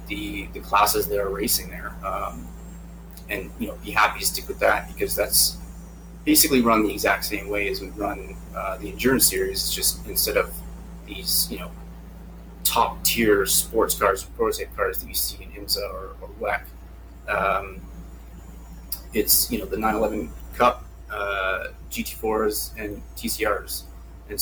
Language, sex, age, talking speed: English, male, 30-49, 160 wpm